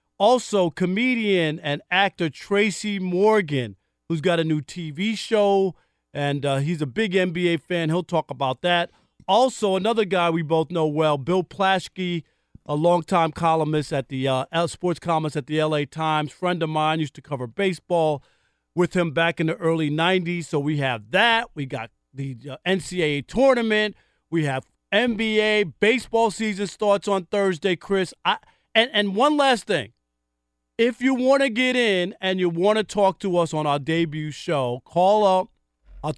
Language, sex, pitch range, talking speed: English, male, 150-195 Hz, 170 wpm